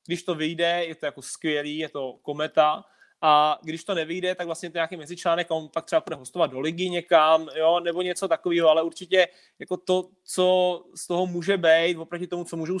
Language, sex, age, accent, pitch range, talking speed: Czech, male, 20-39, native, 155-175 Hz, 205 wpm